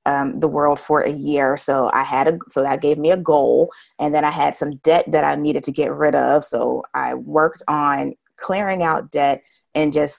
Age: 30-49